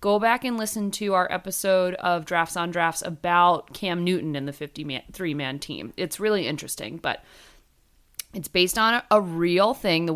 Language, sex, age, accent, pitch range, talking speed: English, female, 30-49, American, 170-240 Hz, 170 wpm